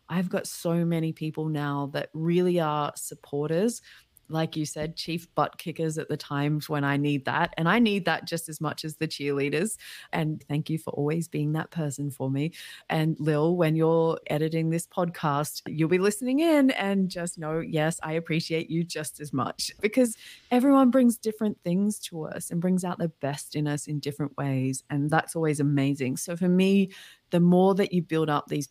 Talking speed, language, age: 200 wpm, English, 30-49